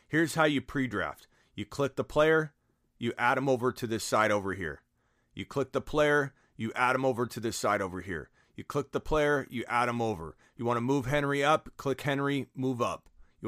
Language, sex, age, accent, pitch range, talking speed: English, male, 40-59, American, 110-145 Hz, 220 wpm